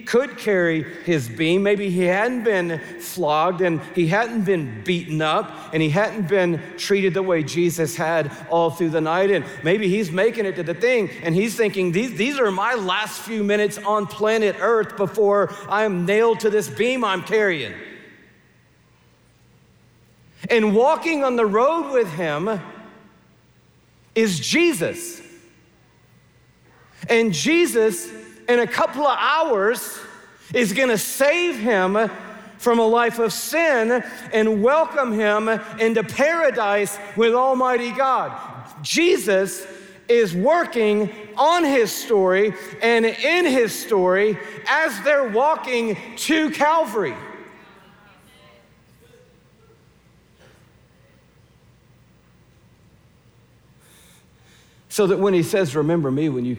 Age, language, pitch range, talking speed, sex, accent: 50-69, English, 175-235 Hz, 120 wpm, male, American